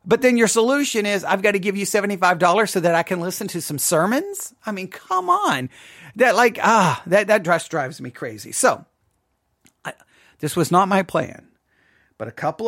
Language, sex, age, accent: English, male, 40-59, American